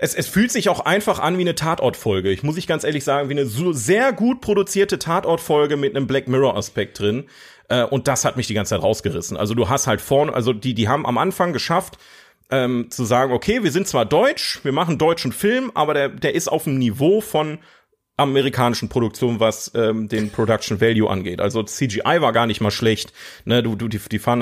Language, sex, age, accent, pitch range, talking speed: German, male, 30-49, German, 110-140 Hz, 220 wpm